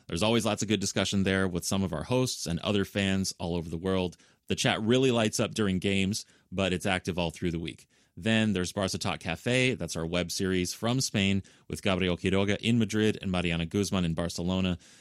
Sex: male